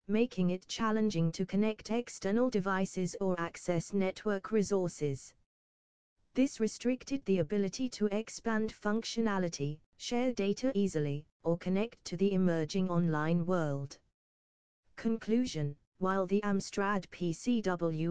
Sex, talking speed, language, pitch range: female, 110 wpm, English, 170-210 Hz